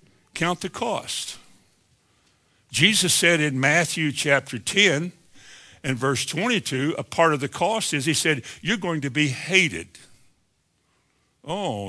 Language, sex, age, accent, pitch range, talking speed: English, male, 60-79, American, 145-200 Hz, 130 wpm